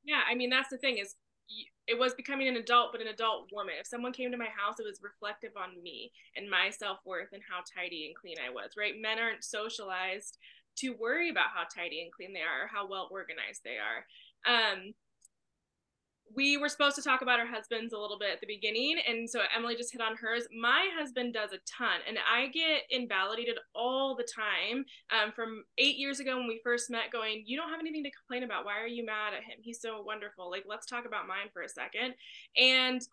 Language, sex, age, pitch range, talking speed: English, female, 20-39, 220-275 Hz, 230 wpm